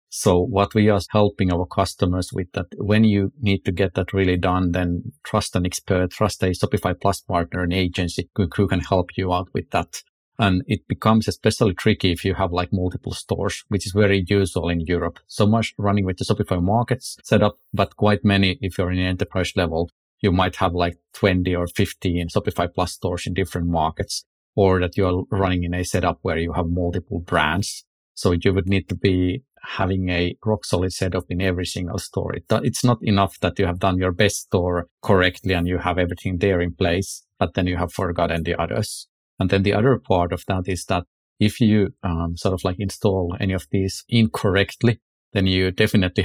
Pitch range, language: 90-100 Hz, English